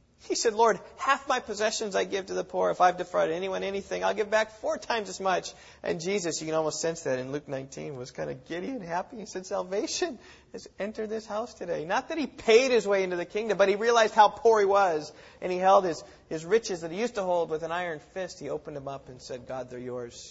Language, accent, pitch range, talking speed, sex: English, American, 120-185 Hz, 255 wpm, male